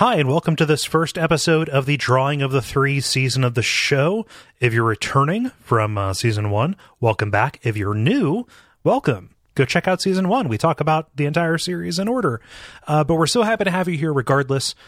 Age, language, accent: 30-49, English, American